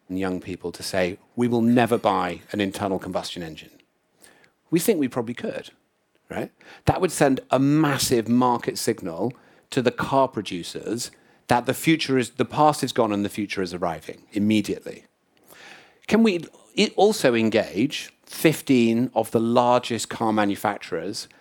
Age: 40-59